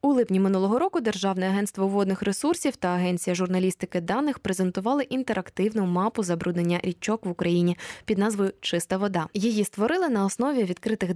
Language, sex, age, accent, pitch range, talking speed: Ukrainian, female, 20-39, native, 180-250 Hz, 150 wpm